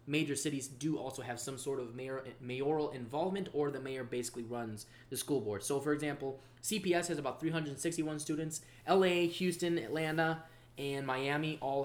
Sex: male